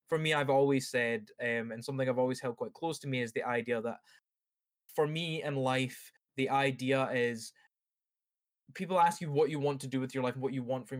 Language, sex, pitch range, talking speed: English, male, 120-140 Hz, 230 wpm